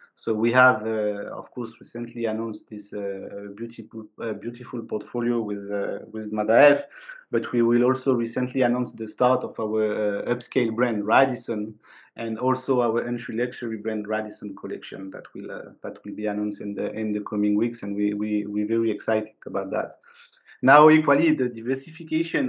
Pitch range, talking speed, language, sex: 105-120 Hz, 175 wpm, English, male